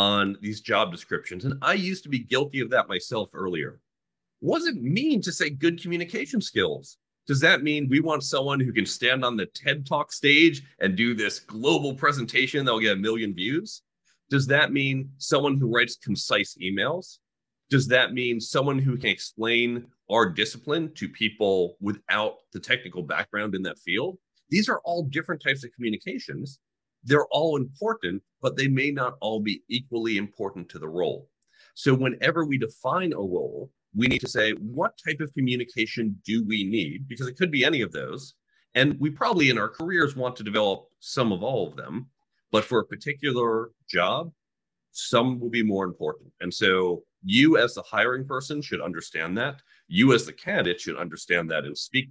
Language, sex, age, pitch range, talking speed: English, male, 40-59, 115-150 Hz, 185 wpm